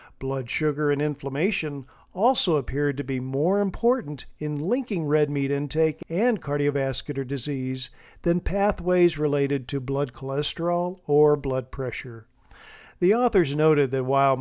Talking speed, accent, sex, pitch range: 135 wpm, American, male, 140-175 Hz